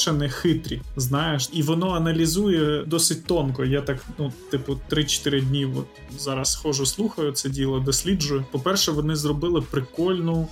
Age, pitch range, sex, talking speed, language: 20-39, 140-170 Hz, male, 135 wpm, Ukrainian